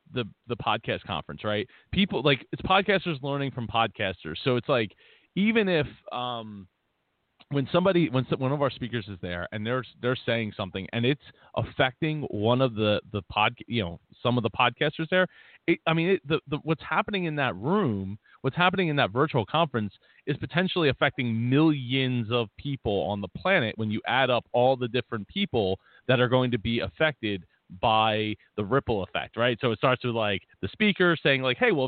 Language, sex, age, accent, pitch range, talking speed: English, male, 30-49, American, 110-145 Hz, 195 wpm